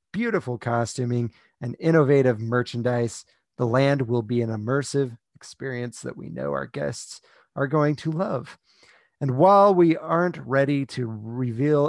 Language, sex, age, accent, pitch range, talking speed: English, male, 30-49, American, 120-150 Hz, 140 wpm